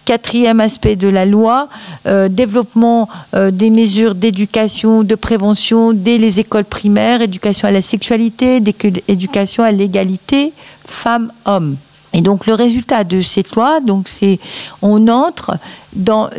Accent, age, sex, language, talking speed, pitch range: French, 50-69, female, French, 130 wpm, 195-240 Hz